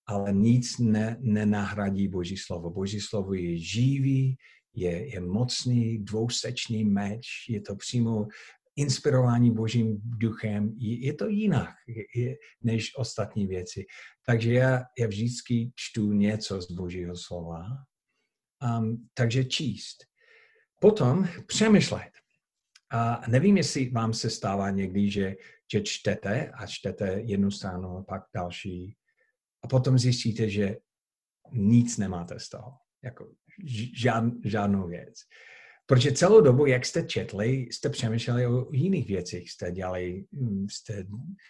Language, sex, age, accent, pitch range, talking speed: Czech, male, 50-69, native, 100-125 Hz, 120 wpm